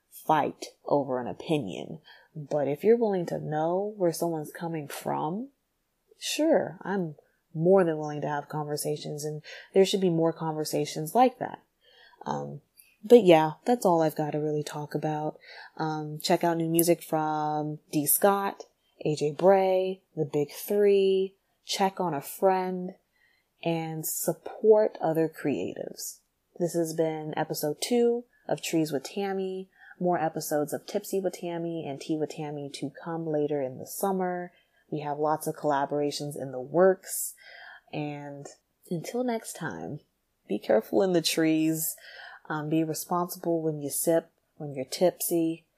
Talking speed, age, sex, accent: 150 wpm, 20-39, female, American